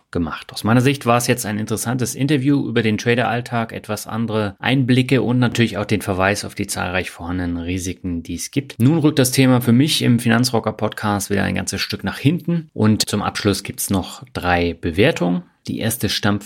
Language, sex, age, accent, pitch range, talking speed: German, male, 30-49, German, 100-125 Hz, 200 wpm